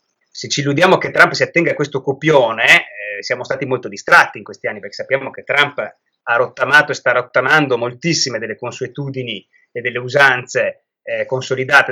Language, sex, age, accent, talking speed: Italian, male, 30-49, native, 175 wpm